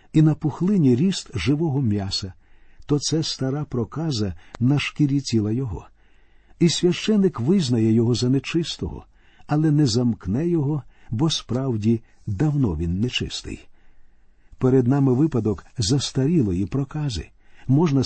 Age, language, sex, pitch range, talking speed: 50-69, Ukrainian, male, 110-155 Hz, 115 wpm